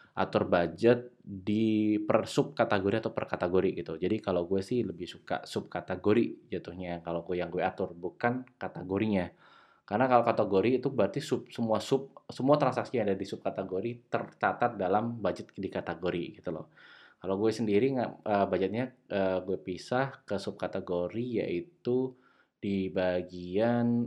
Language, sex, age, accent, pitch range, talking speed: Indonesian, male, 20-39, native, 95-125 Hz, 155 wpm